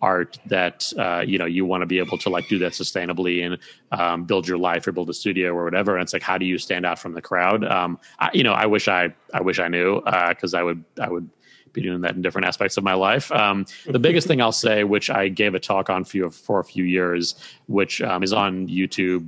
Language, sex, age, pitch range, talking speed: English, male, 30-49, 90-105 Hz, 265 wpm